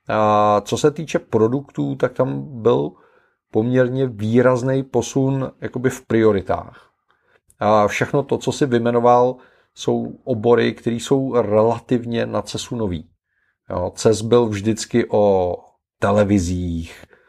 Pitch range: 100-120 Hz